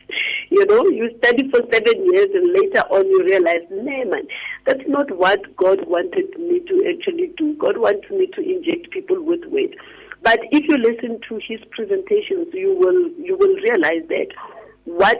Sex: female